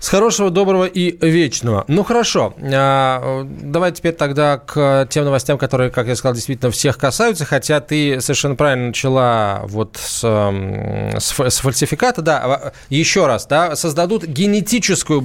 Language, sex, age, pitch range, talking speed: Russian, male, 20-39, 125-170 Hz, 140 wpm